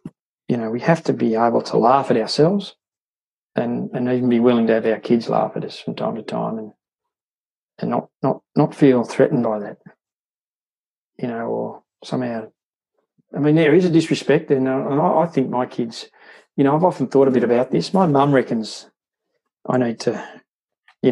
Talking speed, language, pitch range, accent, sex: 195 wpm, English, 115-150 Hz, Australian, male